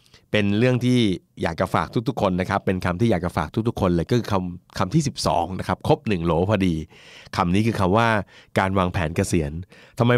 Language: Thai